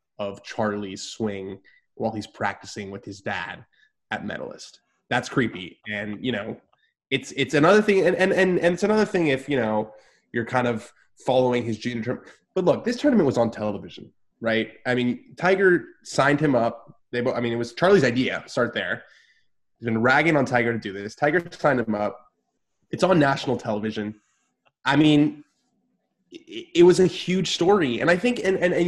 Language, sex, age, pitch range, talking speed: English, male, 20-39, 120-170 Hz, 185 wpm